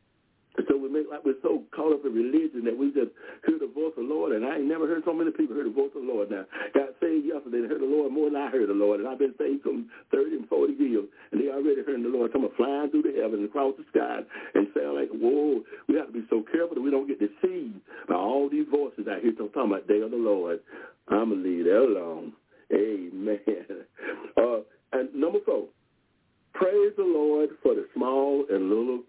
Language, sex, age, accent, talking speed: English, male, 60-79, American, 245 wpm